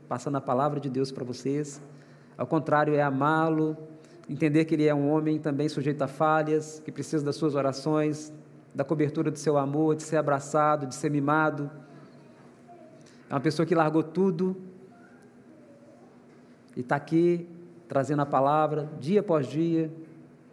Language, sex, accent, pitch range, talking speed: Portuguese, male, Brazilian, 145-165 Hz, 150 wpm